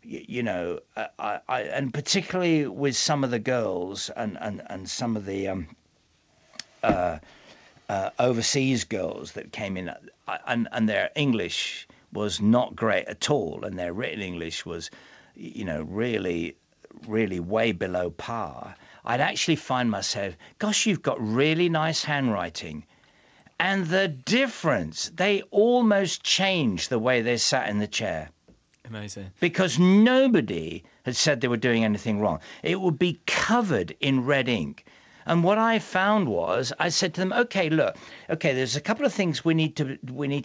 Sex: male